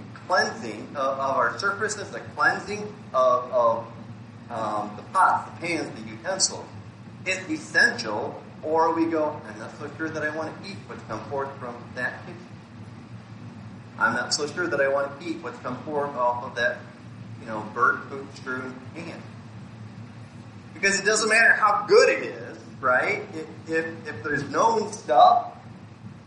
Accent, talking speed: American, 165 wpm